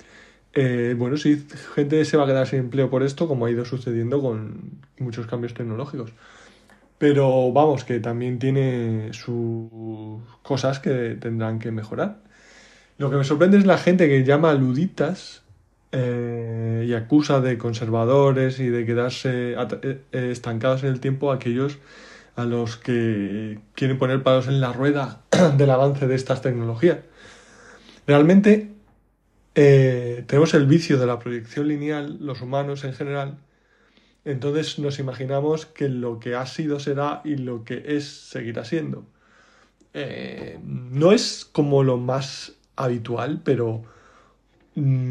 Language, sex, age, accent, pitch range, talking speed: Spanish, male, 20-39, Spanish, 120-145 Hz, 140 wpm